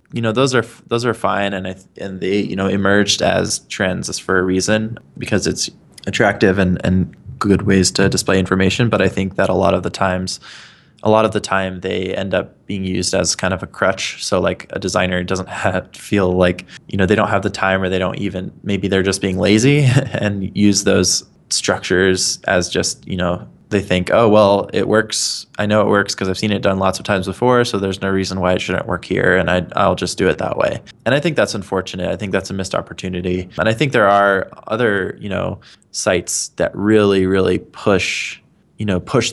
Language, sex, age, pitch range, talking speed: English, male, 20-39, 95-105 Hz, 225 wpm